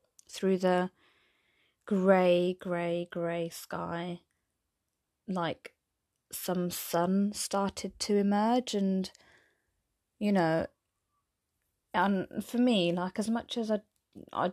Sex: female